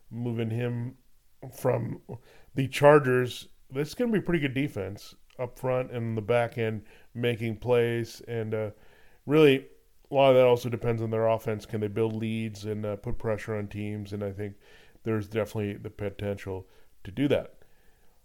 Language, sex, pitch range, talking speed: English, male, 110-135 Hz, 175 wpm